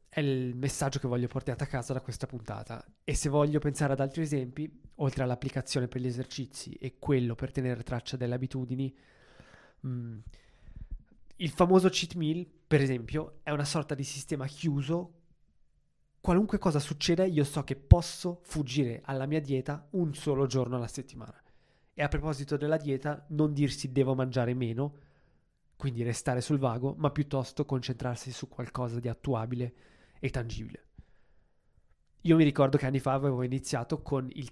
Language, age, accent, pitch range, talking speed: Italian, 20-39, native, 125-150 Hz, 160 wpm